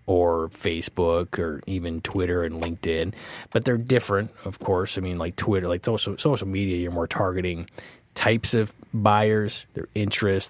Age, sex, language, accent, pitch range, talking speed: 30-49, male, English, American, 95-115 Hz, 155 wpm